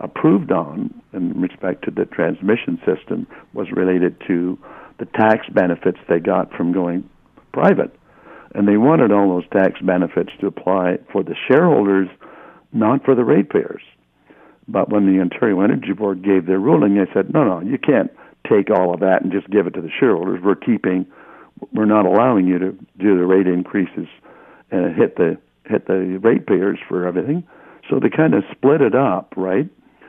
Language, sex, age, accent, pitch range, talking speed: English, male, 60-79, American, 90-105 Hz, 175 wpm